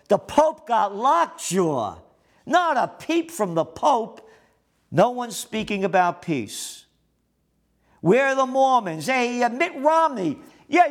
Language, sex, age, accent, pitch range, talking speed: English, male, 50-69, American, 155-240 Hz, 130 wpm